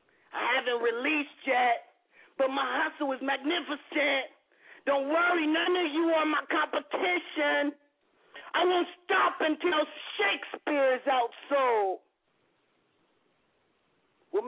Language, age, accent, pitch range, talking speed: English, 40-59, American, 270-350 Hz, 105 wpm